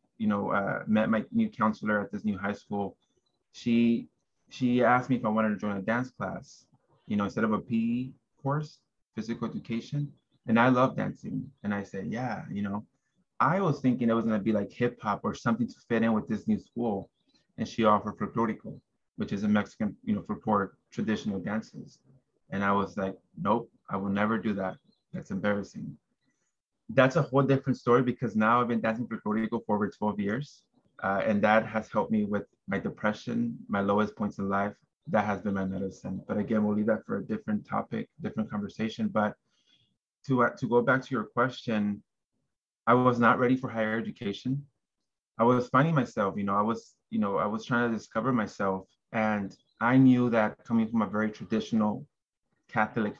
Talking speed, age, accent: 200 wpm, 20-39, American